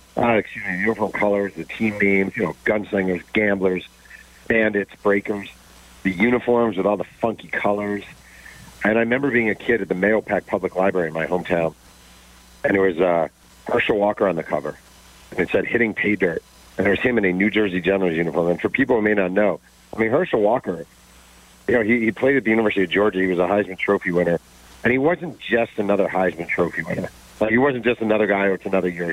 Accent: American